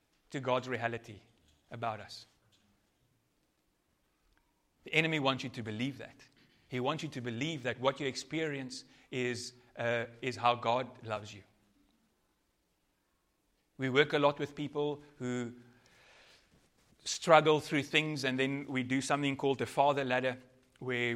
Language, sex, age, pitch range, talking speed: English, male, 30-49, 120-145 Hz, 135 wpm